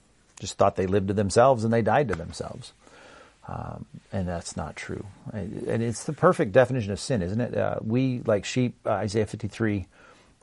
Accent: American